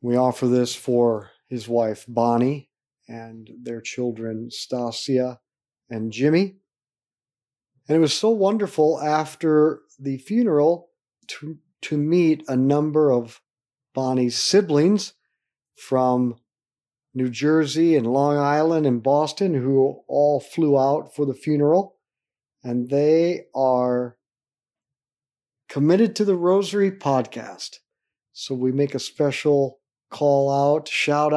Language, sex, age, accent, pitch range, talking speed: English, male, 50-69, American, 125-155 Hz, 115 wpm